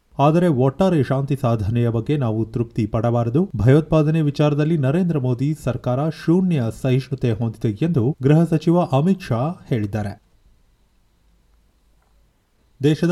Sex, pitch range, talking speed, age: male, 120-160 Hz, 105 wpm, 30-49